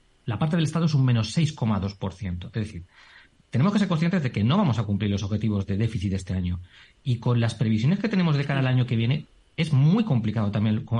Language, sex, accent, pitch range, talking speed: Spanish, male, Spanish, 110-150 Hz, 230 wpm